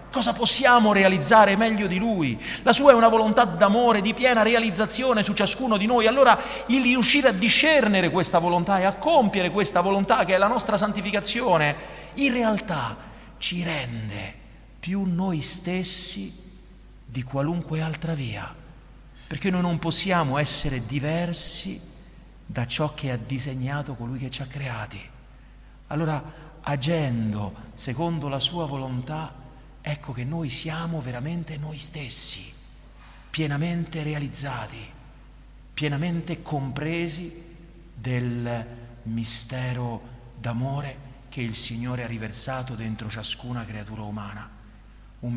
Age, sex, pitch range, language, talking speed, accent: 40-59, male, 115-165 Hz, Italian, 125 wpm, native